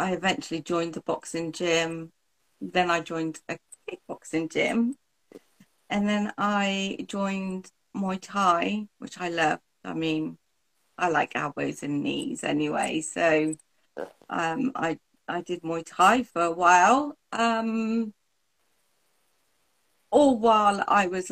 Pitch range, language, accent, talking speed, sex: 165-205 Hz, German, British, 125 wpm, female